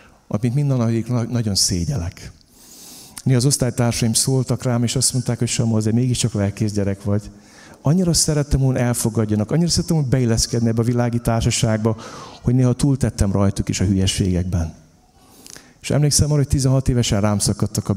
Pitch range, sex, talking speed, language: 95-130 Hz, male, 160 wpm, Hungarian